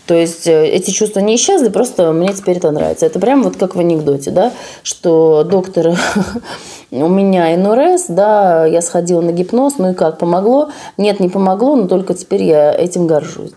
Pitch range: 160-210 Hz